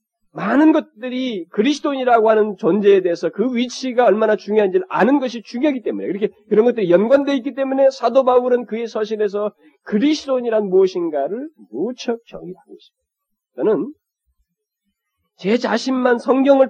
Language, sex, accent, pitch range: Korean, male, native, 180-255 Hz